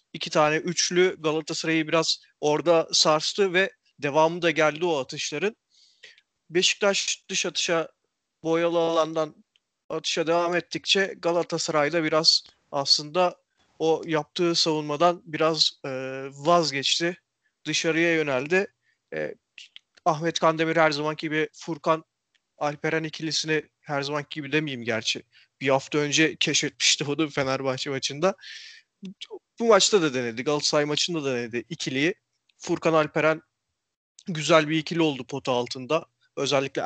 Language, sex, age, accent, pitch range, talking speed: Turkish, male, 40-59, native, 150-170 Hz, 115 wpm